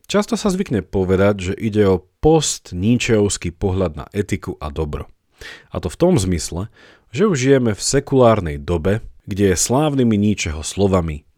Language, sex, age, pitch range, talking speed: Slovak, male, 40-59, 85-120 Hz, 155 wpm